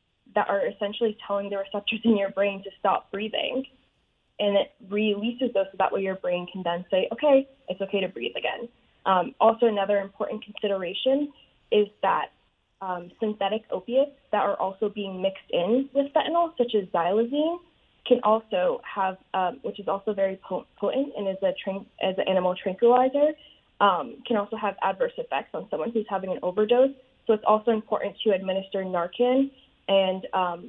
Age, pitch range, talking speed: 20-39, 195-245 Hz, 170 wpm